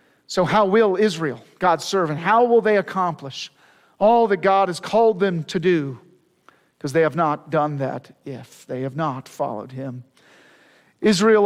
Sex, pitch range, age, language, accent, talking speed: male, 165-220 Hz, 50-69, English, American, 160 wpm